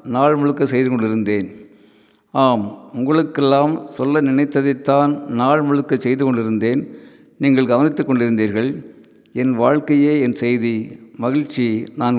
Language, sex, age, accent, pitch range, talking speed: Tamil, male, 50-69, native, 115-140 Hz, 105 wpm